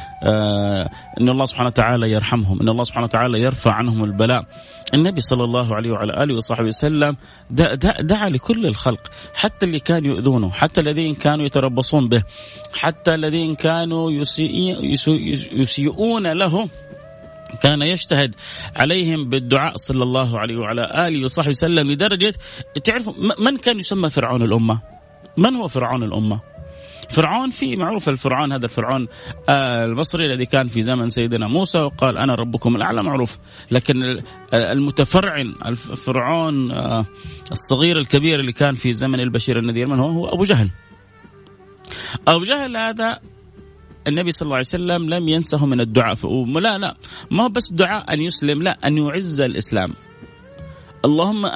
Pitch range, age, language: 120-170 Hz, 30-49, Arabic